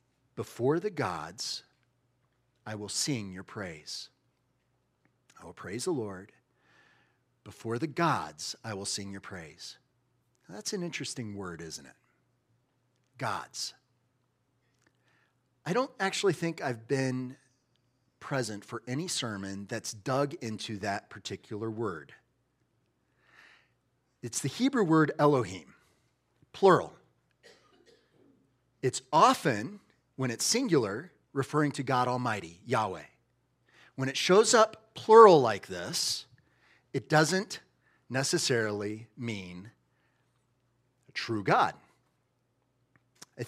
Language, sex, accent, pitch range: English, male, American, 120-145 Hz